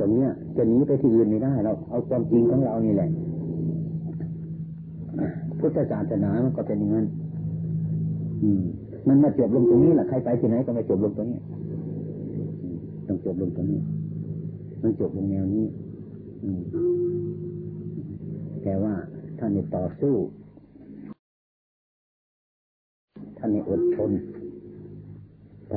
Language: Thai